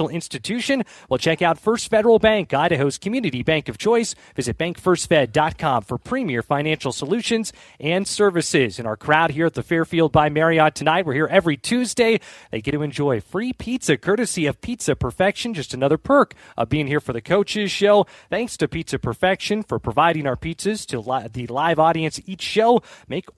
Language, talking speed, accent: English, 175 wpm, American